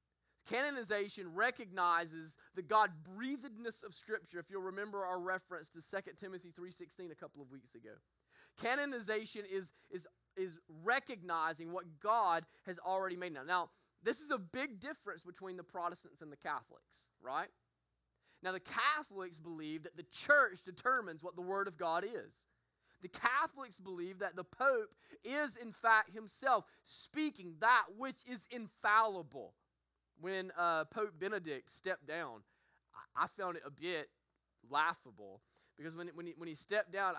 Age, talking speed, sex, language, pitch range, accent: 20-39, 145 wpm, male, English, 160-215 Hz, American